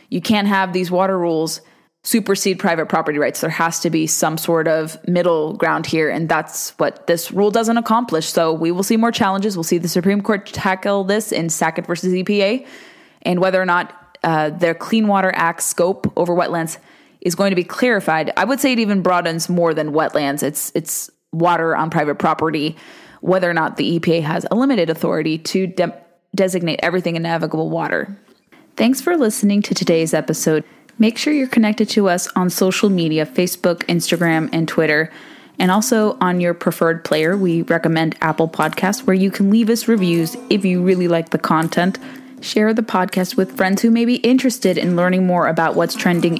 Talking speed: 190 wpm